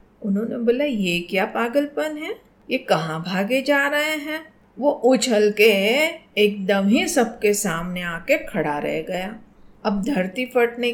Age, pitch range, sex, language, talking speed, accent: 40-59, 195-265 Hz, female, Hindi, 145 wpm, native